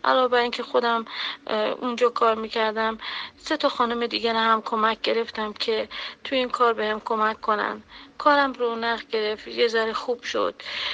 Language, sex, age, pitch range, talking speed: Persian, female, 40-59, 230-290 Hz, 165 wpm